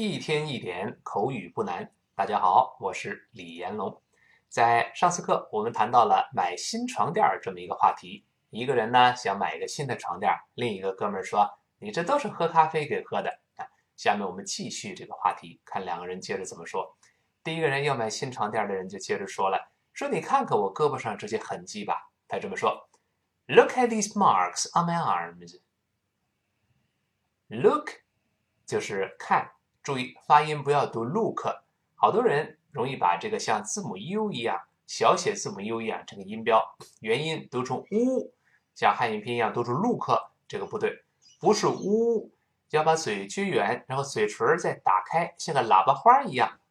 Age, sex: 20-39, male